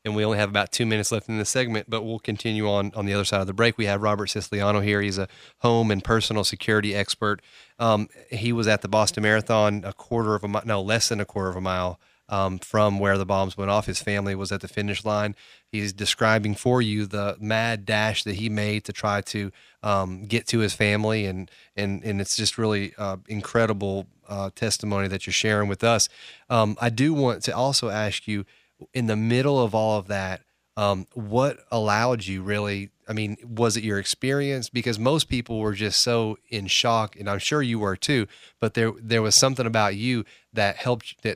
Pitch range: 100-115 Hz